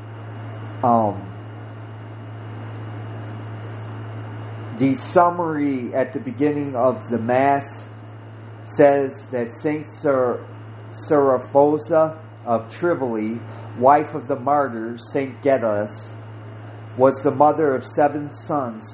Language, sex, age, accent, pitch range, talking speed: English, male, 40-59, American, 110-145 Hz, 85 wpm